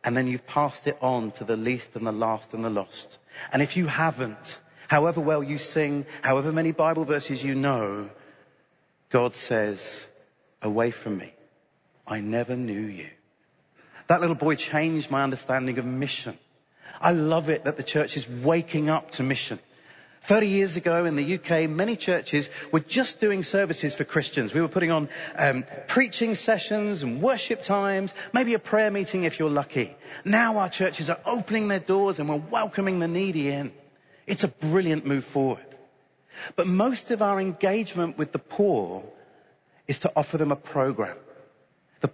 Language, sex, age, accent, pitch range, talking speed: English, male, 40-59, British, 135-185 Hz, 170 wpm